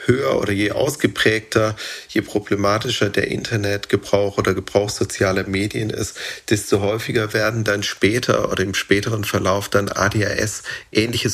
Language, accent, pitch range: German, German, 100-110 Hz